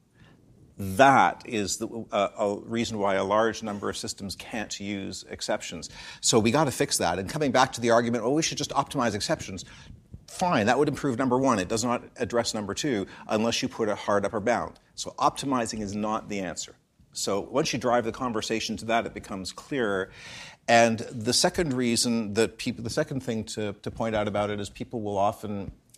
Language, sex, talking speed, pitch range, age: English, male, 205 wpm, 105-130 Hz, 50-69